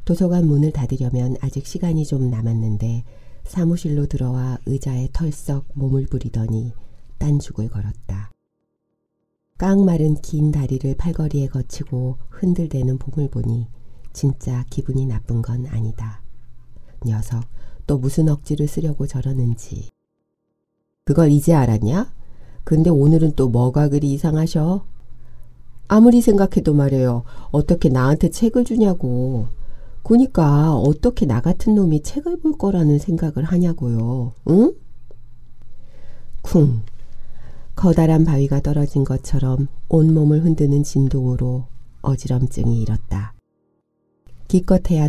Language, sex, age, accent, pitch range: Korean, female, 40-59, native, 120-150 Hz